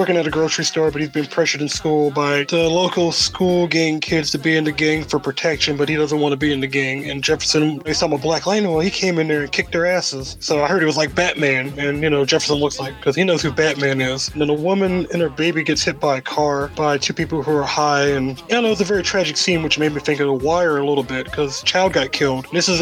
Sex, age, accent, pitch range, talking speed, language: male, 20-39, American, 145-170 Hz, 295 wpm, English